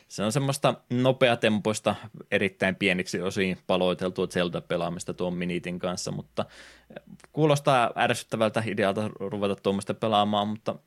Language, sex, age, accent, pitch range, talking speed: Finnish, male, 20-39, native, 90-105 Hz, 110 wpm